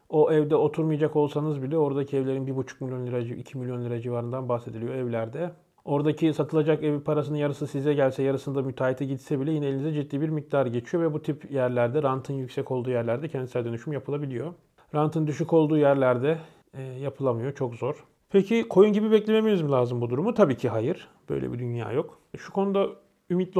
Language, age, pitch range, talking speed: Turkish, 40-59, 130-160 Hz, 175 wpm